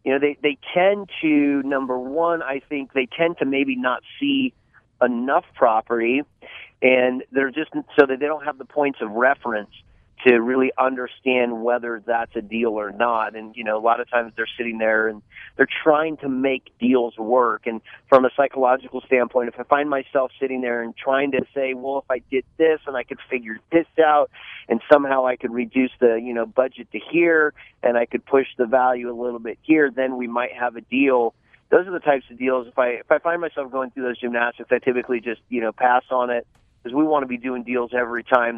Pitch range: 115-135 Hz